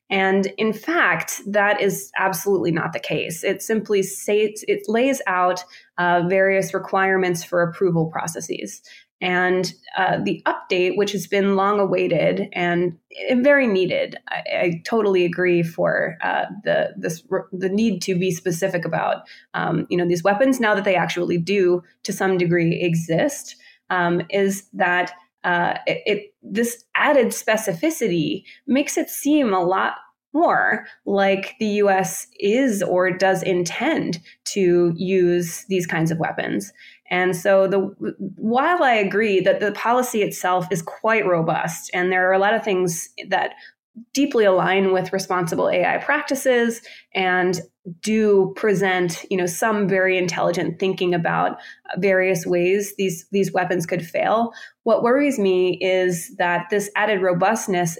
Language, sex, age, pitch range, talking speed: English, female, 20-39, 180-210 Hz, 145 wpm